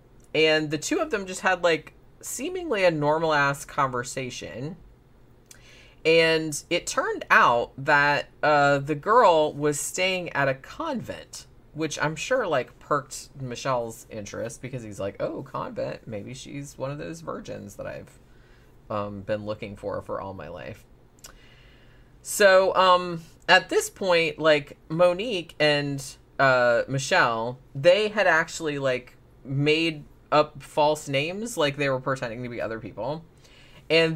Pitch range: 130-165 Hz